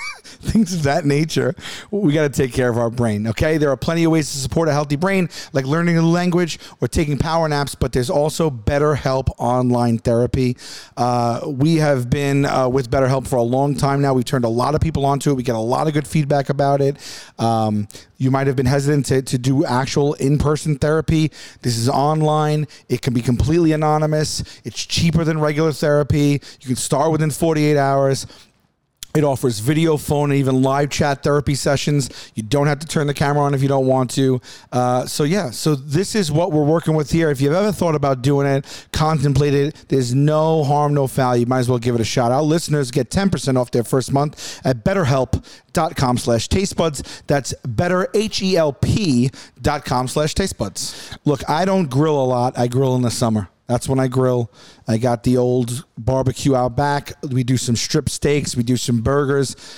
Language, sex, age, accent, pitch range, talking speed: English, male, 40-59, American, 130-155 Hz, 200 wpm